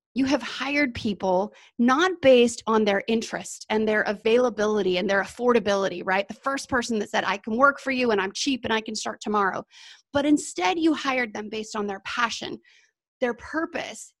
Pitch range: 210-260 Hz